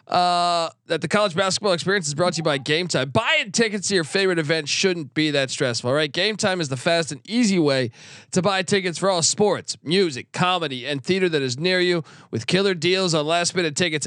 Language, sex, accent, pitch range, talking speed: English, male, American, 145-190 Hz, 230 wpm